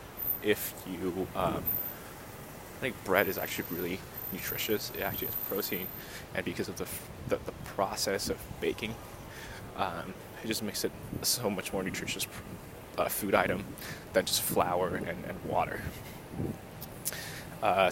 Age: 20-39